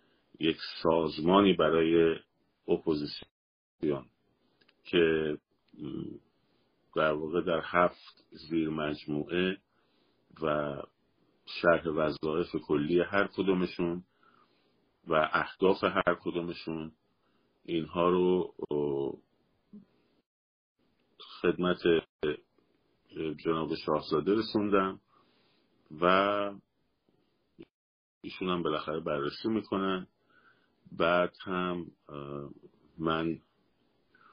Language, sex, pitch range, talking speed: Persian, male, 75-90 Hz, 60 wpm